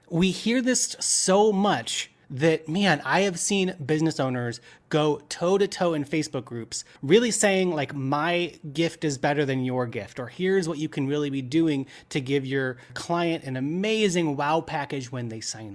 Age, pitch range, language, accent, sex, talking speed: 30-49, 140-185 Hz, English, American, male, 185 wpm